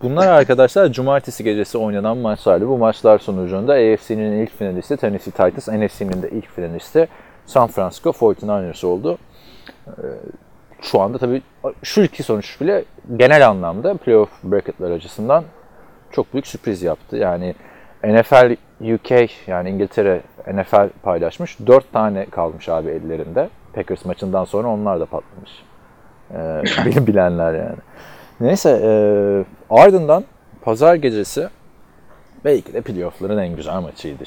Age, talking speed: 40-59, 120 wpm